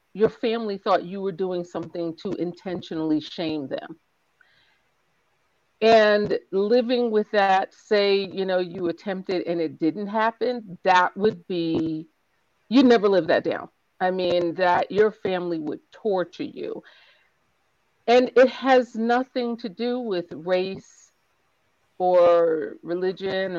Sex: female